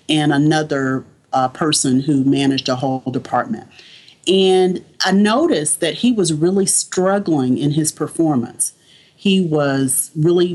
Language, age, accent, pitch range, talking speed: English, 40-59, American, 145-175 Hz, 130 wpm